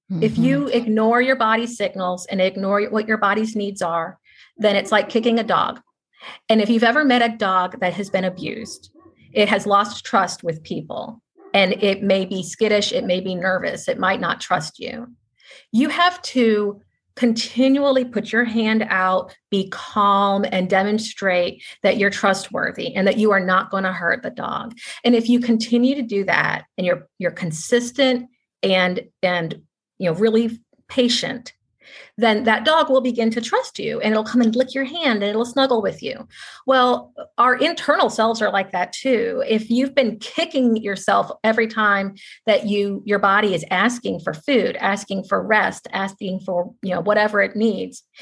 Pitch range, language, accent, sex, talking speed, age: 195-240 Hz, English, American, female, 180 wpm, 40-59